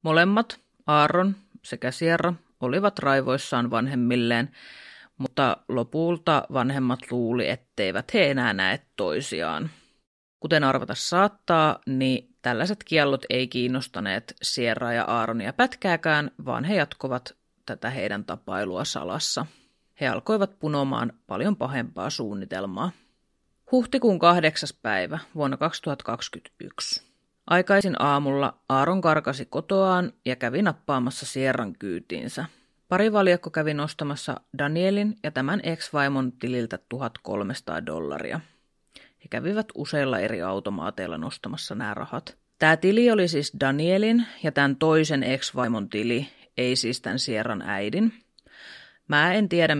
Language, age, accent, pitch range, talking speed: Finnish, 30-49, native, 125-180 Hz, 110 wpm